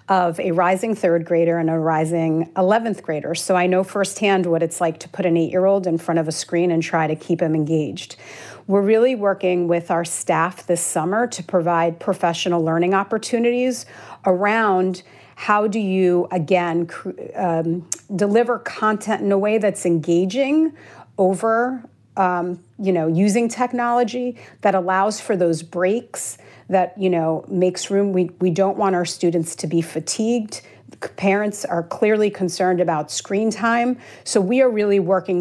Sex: female